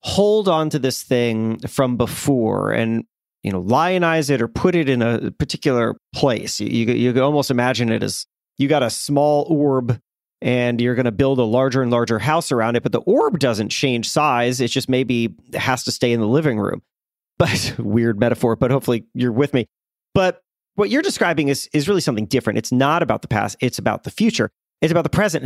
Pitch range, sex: 115-145 Hz, male